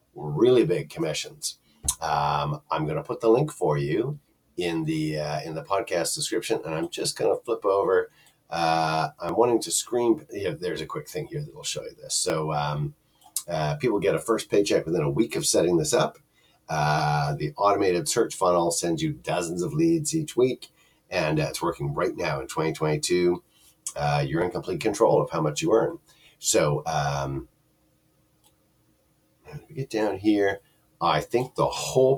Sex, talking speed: male, 185 wpm